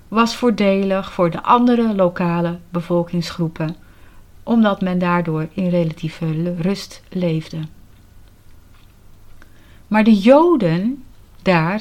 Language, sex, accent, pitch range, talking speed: Dutch, female, Dutch, 160-220 Hz, 90 wpm